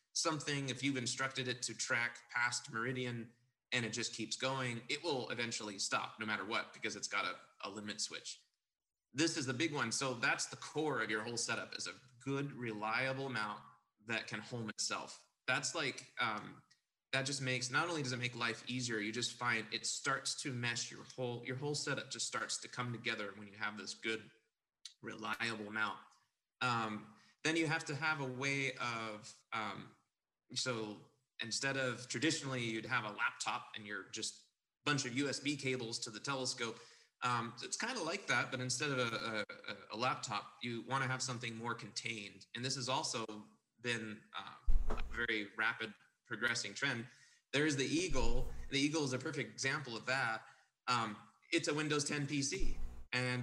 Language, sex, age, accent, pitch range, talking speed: English, male, 30-49, American, 115-135 Hz, 185 wpm